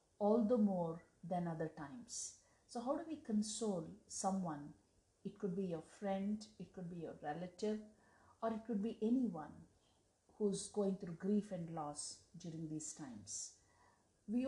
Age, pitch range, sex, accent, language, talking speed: 50-69, 180-230 Hz, female, native, Telugu, 155 wpm